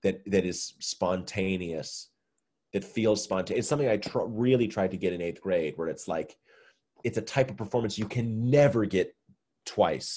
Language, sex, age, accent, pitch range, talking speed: English, male, 30-49, American, 95-125 Hz, 185 wpm